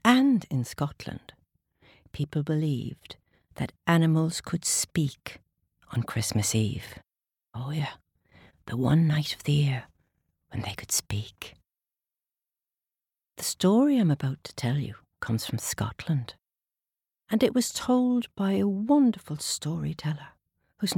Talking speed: 125 wpm